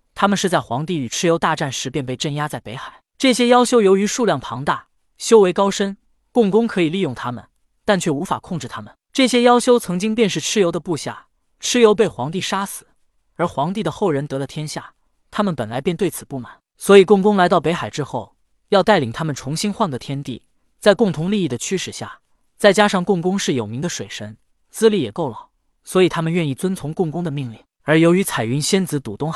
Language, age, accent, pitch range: Chinese, 20-39, native, 140-200 Hz